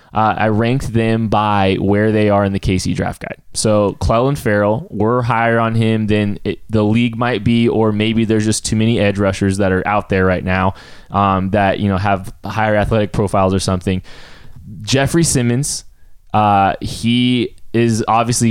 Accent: American